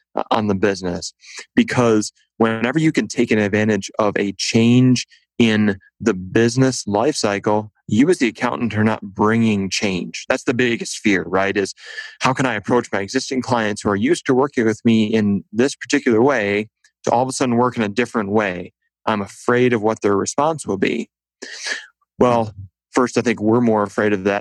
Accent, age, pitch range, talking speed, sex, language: American, 30-49, 100-125 Hz, 190 wpm, male, English